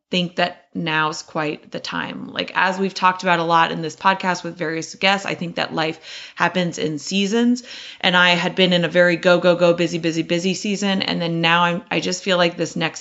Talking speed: 230 wpm